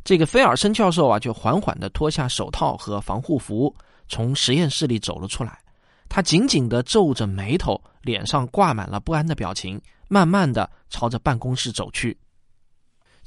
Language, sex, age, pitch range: Chinese, male, 20-39, 120-195 Hz